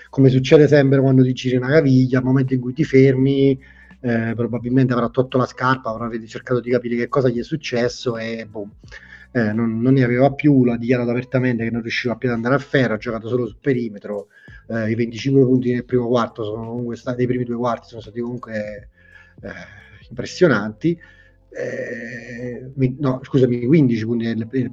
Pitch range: 115-130 Hz